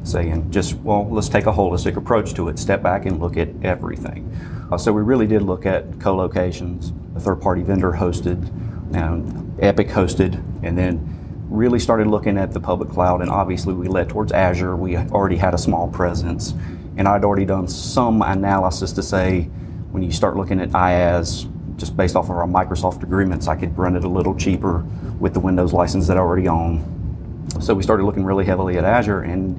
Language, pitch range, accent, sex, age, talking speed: English, 90-100 Hz, American, male, 30-49, 195 wpm